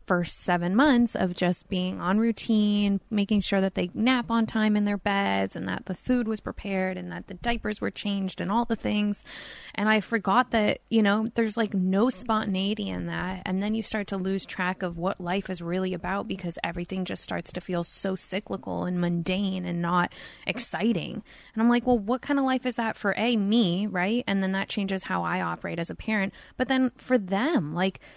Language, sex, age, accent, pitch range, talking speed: English, female, 10-29, American, 180-220 Hz, 215 wpm